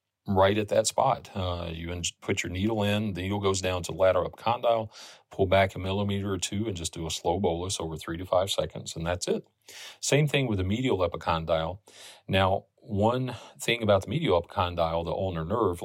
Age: 40-59